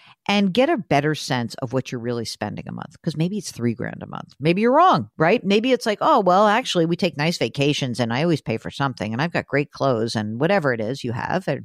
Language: English